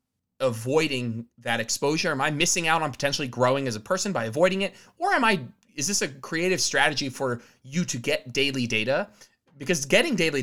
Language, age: English, 20-39